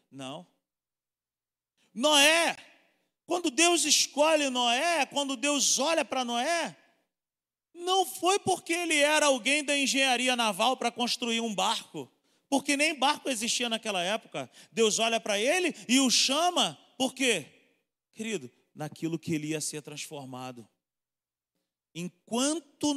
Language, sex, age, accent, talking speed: Portuguese, male, 40-59, Brazilian, 125 wpm